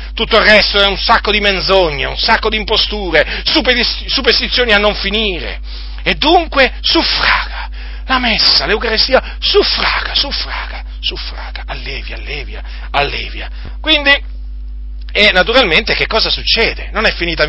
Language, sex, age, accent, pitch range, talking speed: Italian, male, 40-59, native, 195-255 Hz, 125 wpm